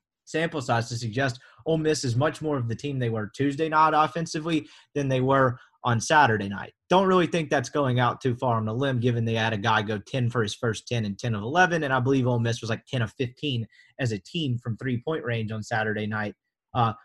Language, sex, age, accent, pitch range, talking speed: English, male, 30-49, American, 120-160 Hz, 245 wpm